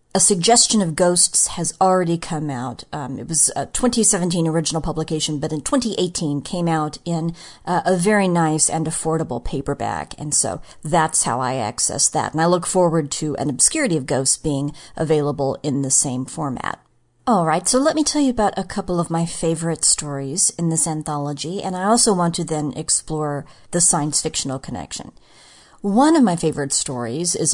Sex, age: female, 40-59